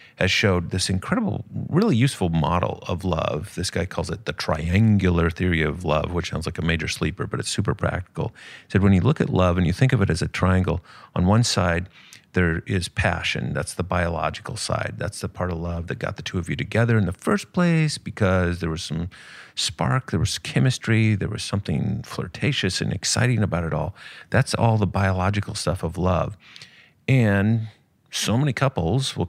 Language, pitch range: English, 90-120 Hz